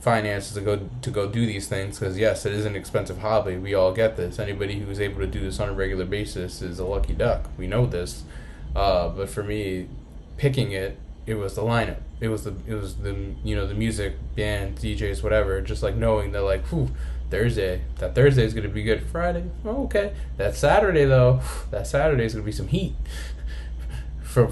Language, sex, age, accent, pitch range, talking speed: English, male, 10-29, American, 95-110 Hz, 210 wpm